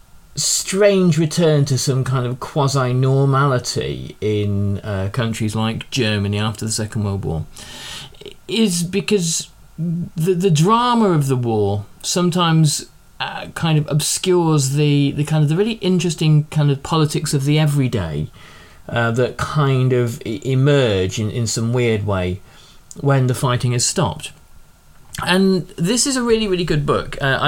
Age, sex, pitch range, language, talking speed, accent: 30-49, male, 115-155 Hz, English, 145 wpm, British